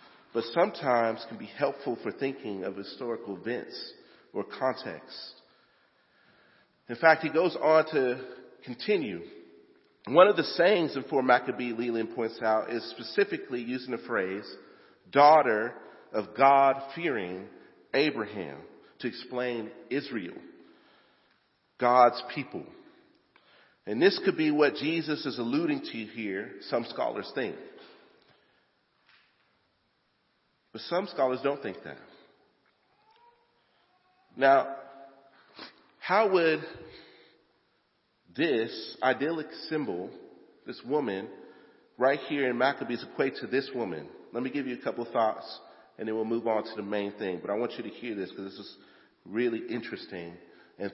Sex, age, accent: male, 40-59, American